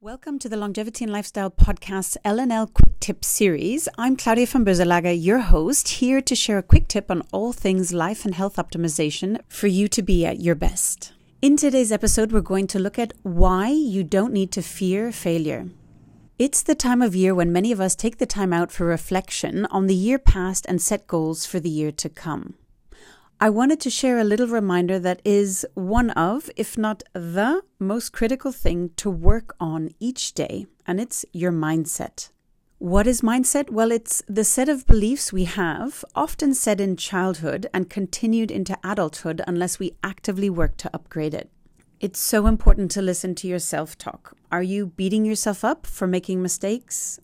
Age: 30-49